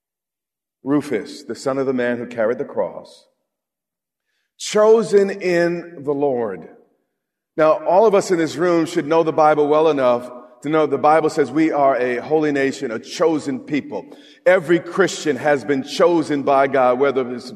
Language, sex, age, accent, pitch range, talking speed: English, male, 40-59, American, 140-185 Hz, 165 wpm